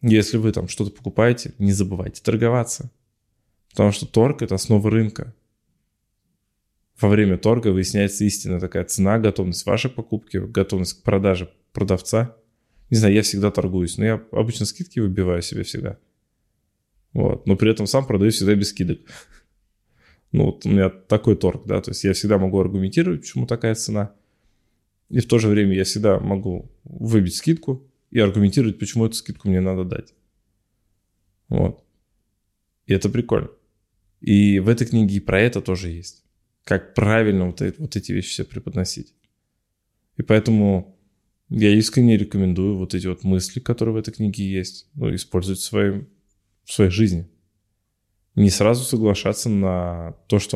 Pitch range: 95-110 Hz